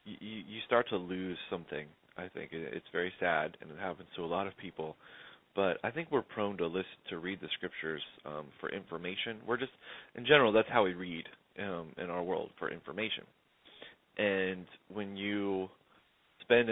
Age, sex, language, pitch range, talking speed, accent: 20-39, male, English, 85-100 Hz, 180 wpm, American